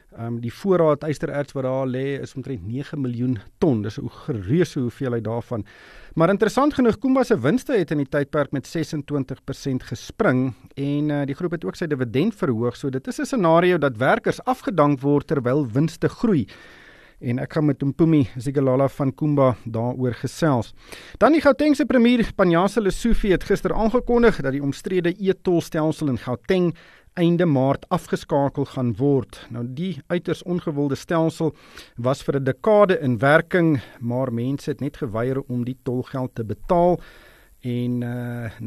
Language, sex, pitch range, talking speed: English, male, 125-175 Hz, 165 wpm